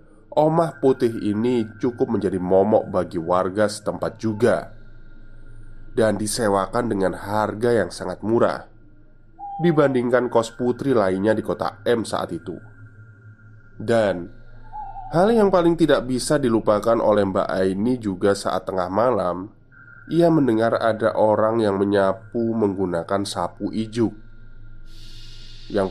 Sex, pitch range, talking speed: male, 105-120 Hz, 115 wpm